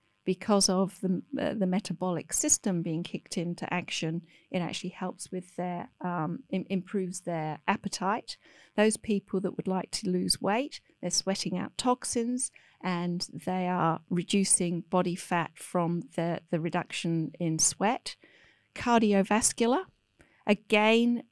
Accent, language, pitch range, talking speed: British, English, 175-200 Hz, 130 wpm